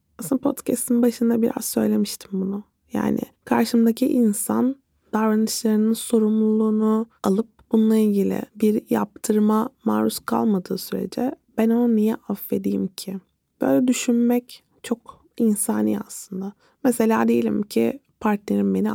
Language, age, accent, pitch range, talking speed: Turkish, 20-39, native, 205-240 Hz, 110 wpm